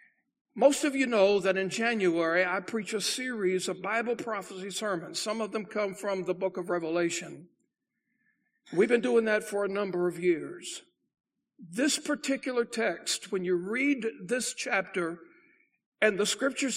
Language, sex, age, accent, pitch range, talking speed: English, male, 60-79, American, 205-265 Hz, 155 wpm